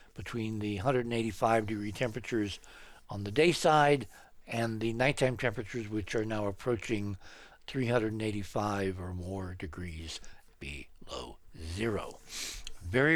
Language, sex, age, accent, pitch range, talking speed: English, male, 60-79, American, 105-130 Hz, 110 wpm